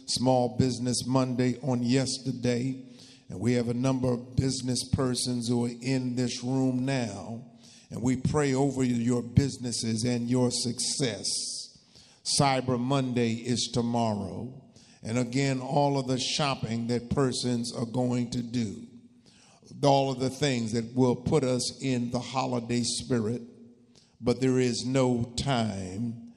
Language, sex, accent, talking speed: English, male, American, 140 wpm